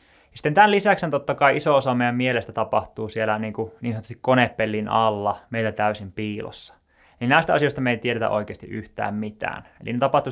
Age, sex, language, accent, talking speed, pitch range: 20-39, male, Finnish, native, 185 wpm, 110-135 Hz